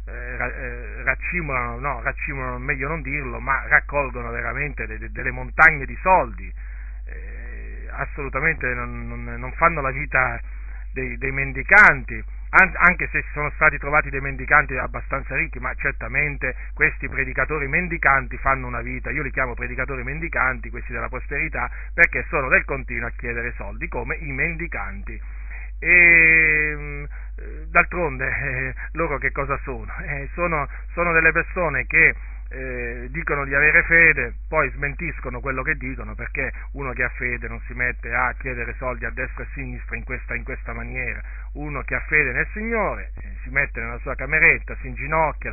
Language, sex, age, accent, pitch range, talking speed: Italian, male, 40-59, native, 120-145 Hz, 150 wpm